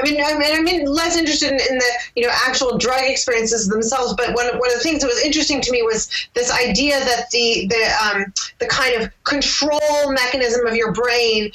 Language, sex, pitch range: English, female, 215-255 Hz